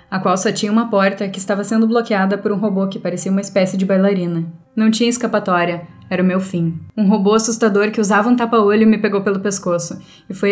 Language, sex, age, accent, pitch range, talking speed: Portuguese, female, 10-29, Brazilian, 185-225 Hz, 220 wpm